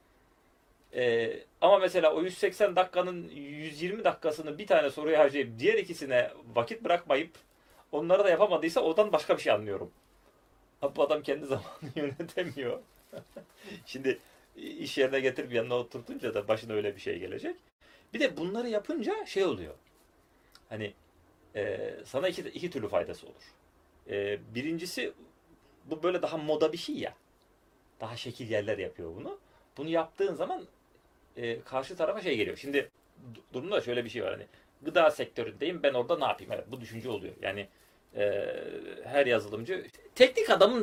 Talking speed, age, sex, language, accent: 145 wpm, 40-59, male, Turkish, native